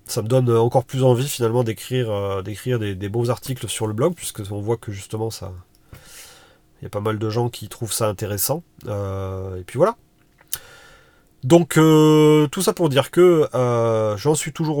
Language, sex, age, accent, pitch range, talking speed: French, male, 30-49, French, 105-130 Hz, 195 wpm